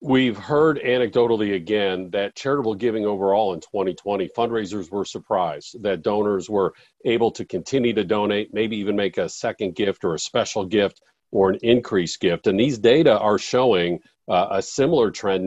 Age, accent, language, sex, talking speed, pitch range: 50-69, American, English, male, 170 wpm, 100-120 Hz